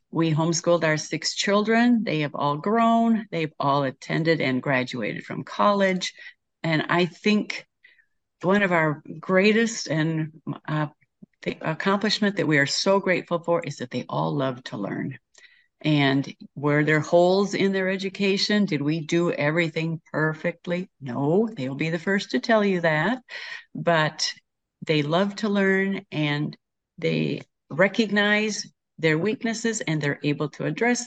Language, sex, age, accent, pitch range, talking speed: English, female, 50-69, American, 150-195 Hz, 145 wpm